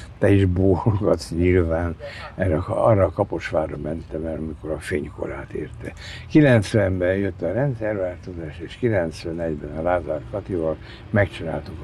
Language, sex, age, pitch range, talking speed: Hungarian, male, 60-79, 80-100 Hz, 120 wpm